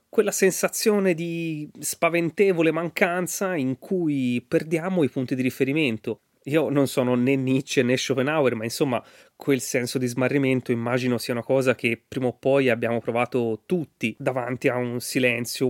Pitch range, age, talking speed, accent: 125-155 Hz, 30-49, 155 wpm, native